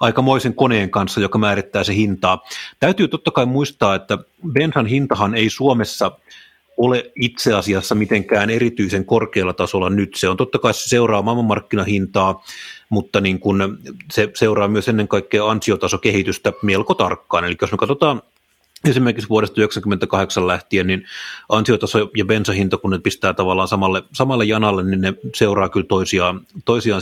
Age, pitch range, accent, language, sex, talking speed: 30-49, 95-115 Hz, native, Finnish, male, 140 wpm